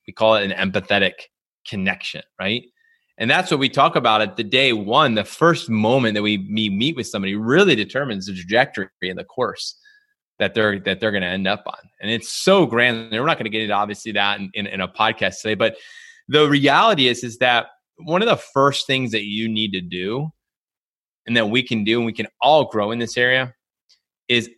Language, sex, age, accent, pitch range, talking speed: English, male, 20-39, American, 105-125 Hz, 215 wpm